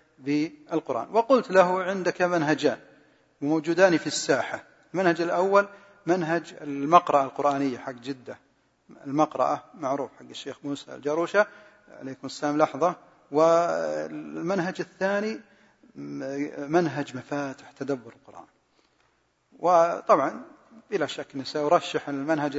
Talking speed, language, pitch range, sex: 95 wpm, Arabic, 145-175 Hz, male